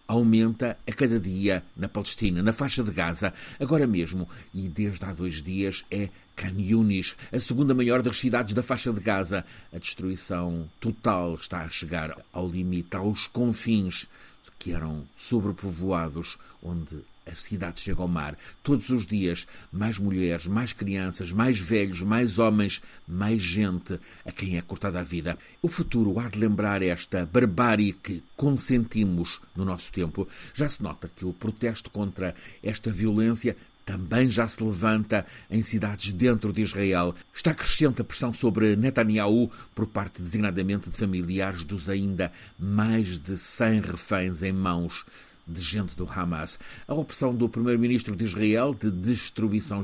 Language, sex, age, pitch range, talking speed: Portuguese, male, 50-69, 90-115 Hz, 155 wpm